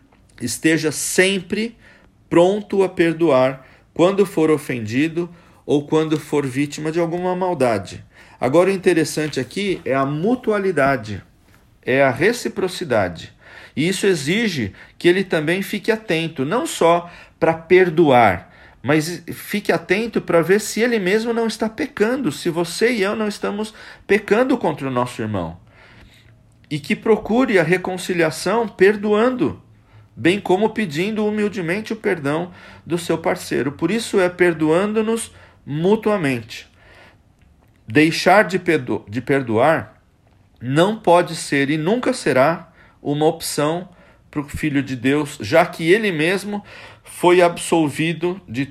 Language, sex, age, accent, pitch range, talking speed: Portuguese, male, 40-59, Brazilian, 140-195 Hz, 125 wpm